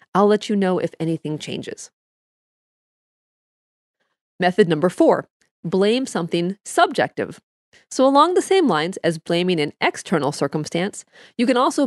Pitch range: 180-245 Hz